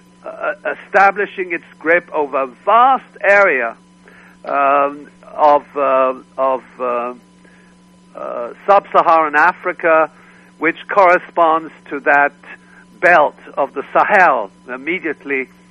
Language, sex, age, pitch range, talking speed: English, male, 60-79, 140-175 Hz, 95 wpm